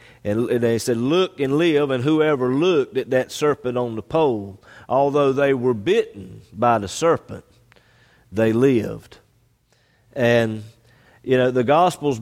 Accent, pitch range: American, 110-140 Hz